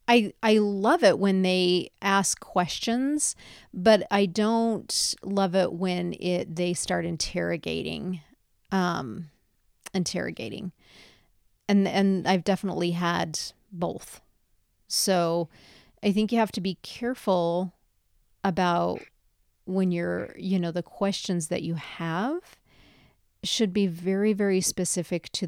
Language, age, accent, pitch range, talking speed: English, 40-59, American, 170-200 Hz, 120 wpm